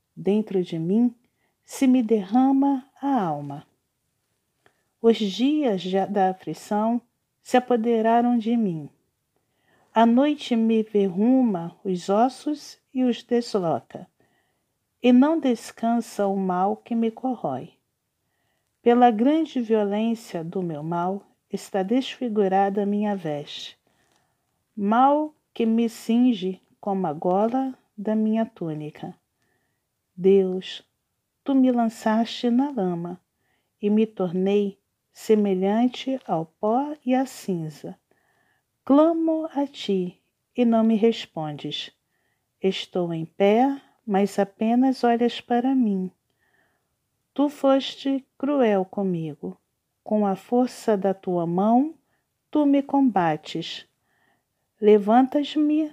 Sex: female